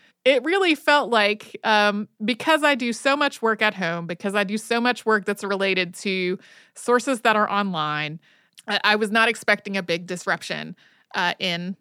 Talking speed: 185 wpm